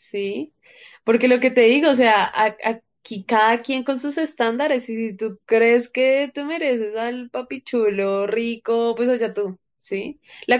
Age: 10-29